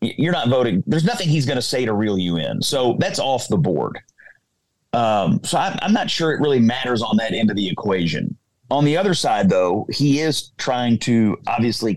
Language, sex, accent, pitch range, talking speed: English, male, American, 110-150 Hz, 215 wpm